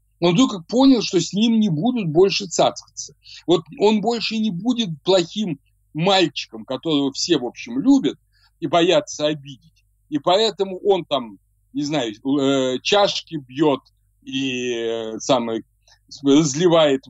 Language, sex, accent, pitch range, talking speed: Ukrainian, male, native, 115-175 Hz, 125 wpm